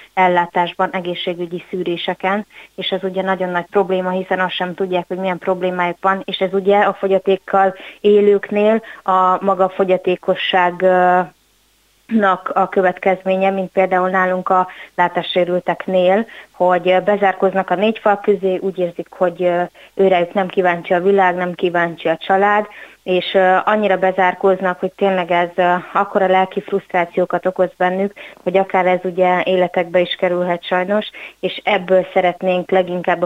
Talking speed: 135 wpm